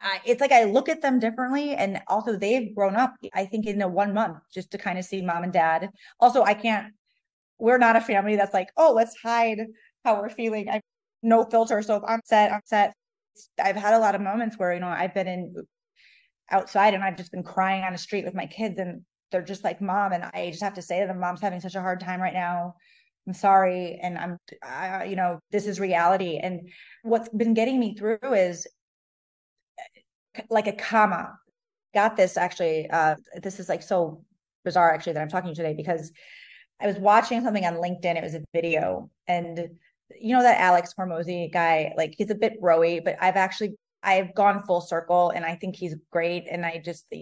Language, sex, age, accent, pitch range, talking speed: English, female, 20-39, American, 175-220 Hz, 215 wpm